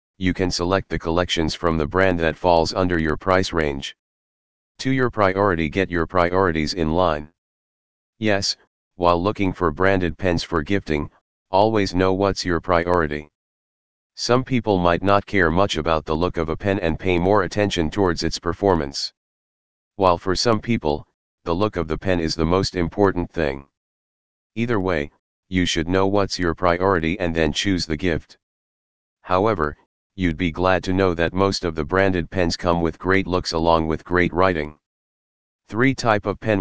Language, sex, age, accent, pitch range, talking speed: English, male, 40-59, American, 80-100 Hz, 170 wpm